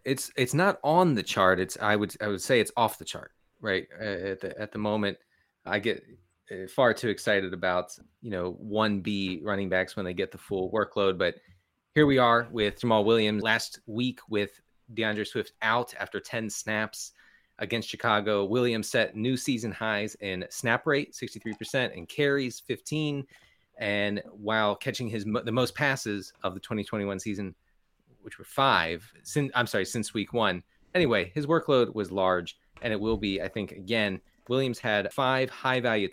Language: English